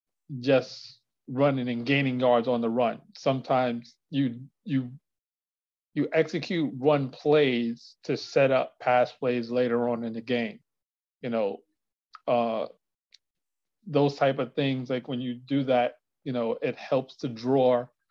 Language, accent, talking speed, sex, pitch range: English, American, 145 wpm, male, 120-140 Hz